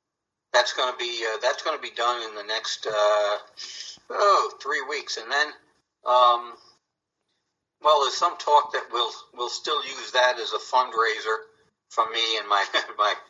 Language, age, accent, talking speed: English, 50-69, American, 170 wpm